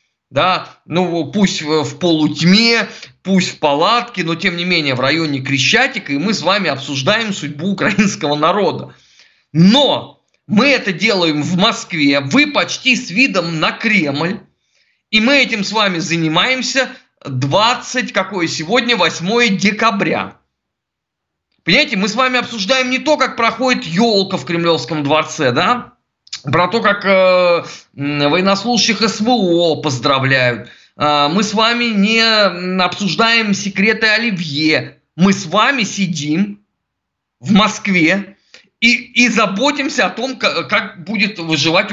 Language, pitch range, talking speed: Russian, 165-230 Hz, 130 wpm